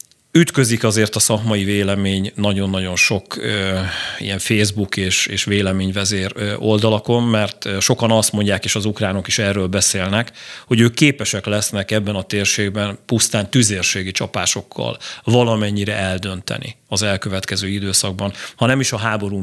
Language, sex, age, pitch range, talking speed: Hungarian, male, 40-59, 100-120 Hz, 135 wpm